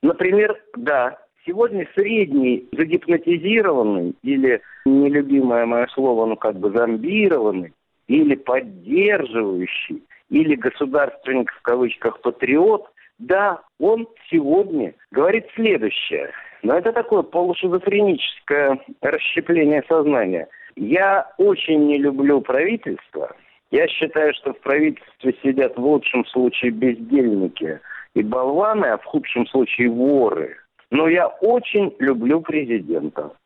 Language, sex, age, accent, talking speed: Russian, male, 50-69, native, 105 wpm